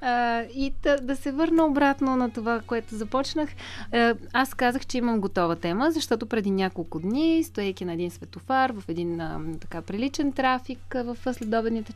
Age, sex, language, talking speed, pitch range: 30-49, female, Bulgarian, 150 wpm, 185-275 Hz